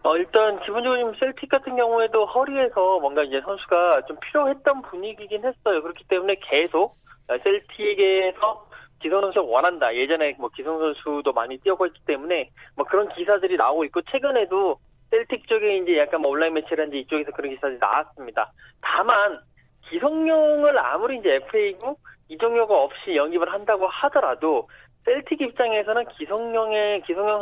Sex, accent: male, native